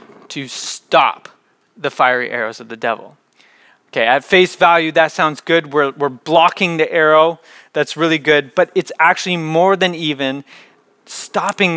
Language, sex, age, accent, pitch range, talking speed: English, male, 30-49, American, 140-180 Hz, 155 wpm